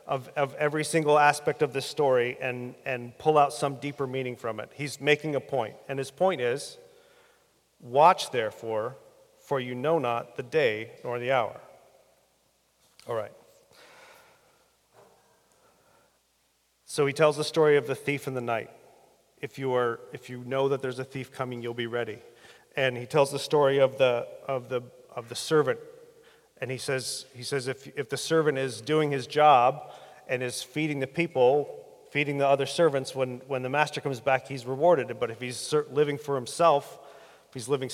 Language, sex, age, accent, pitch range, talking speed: English, male, 40-59, American, 130-155 Hz, 180 wpm